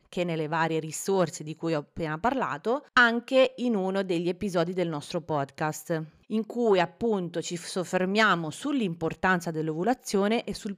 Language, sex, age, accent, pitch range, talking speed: Italian, female, 30-49, native, 165-215 Hz, 145 wpm